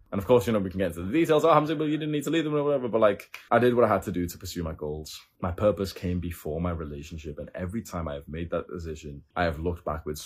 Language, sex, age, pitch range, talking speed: English, male, 20-39, 85-110 Hz, 315 wpm